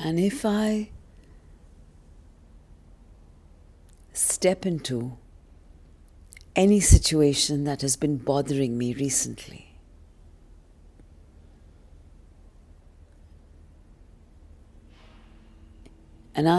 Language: English